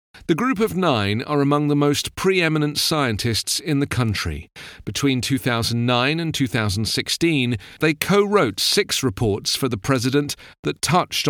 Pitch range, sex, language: 115-155 Hz, male, English